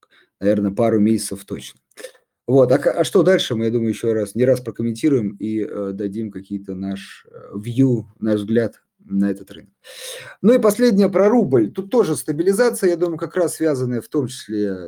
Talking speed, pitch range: 180 wpm, 110-150 Hz